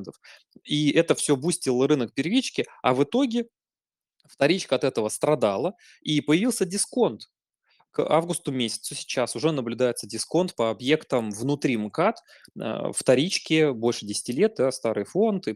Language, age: Russian, 20-39